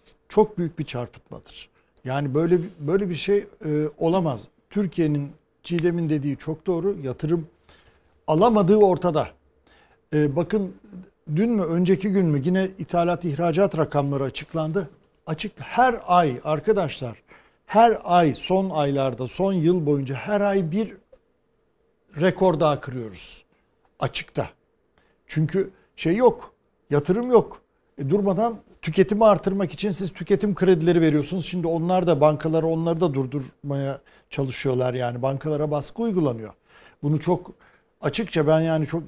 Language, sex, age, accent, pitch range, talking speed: Turkish, male, 60-79, native, 150-195 Hz, 125 wpm